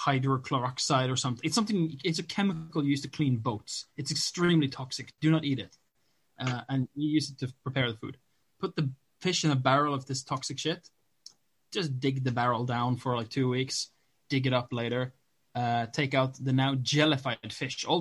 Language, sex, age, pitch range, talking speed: English, male, 20-39, 125-145 Hz, 205 wpm